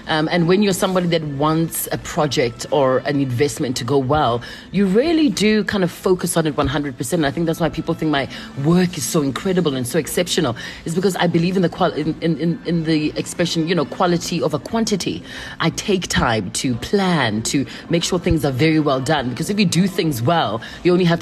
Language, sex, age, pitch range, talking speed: English, female, 30-49, 150-185 Hz, 220 wpm